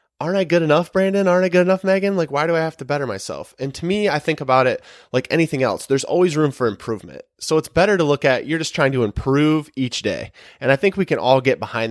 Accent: American